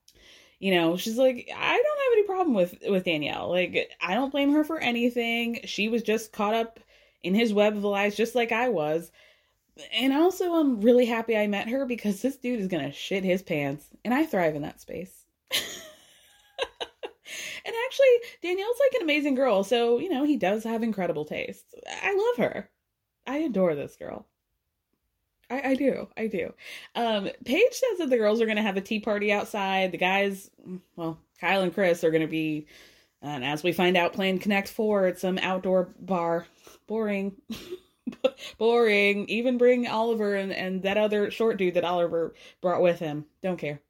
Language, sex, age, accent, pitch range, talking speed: English, female, 20-39, American, 185-255 Hz, 185 wpm